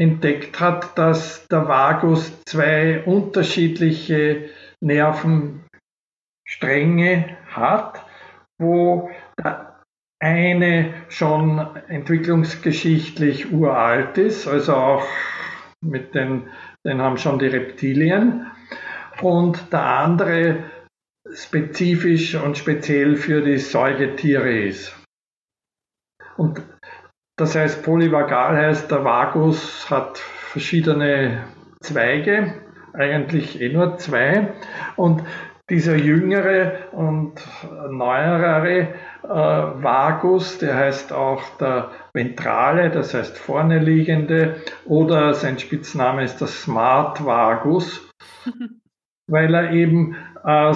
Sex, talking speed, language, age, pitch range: male, 90 wpm, German, 50-69, 145-170 Hz